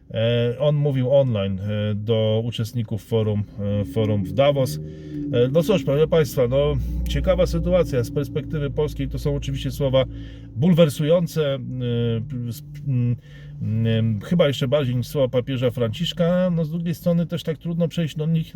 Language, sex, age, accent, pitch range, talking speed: Polish, male, 40-59, native, 125-165 Hz, 135 wpm